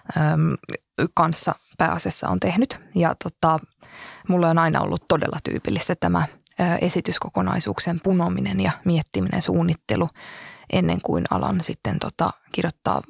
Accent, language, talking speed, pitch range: native, Finnish, 105 wpm, 160-180 Hz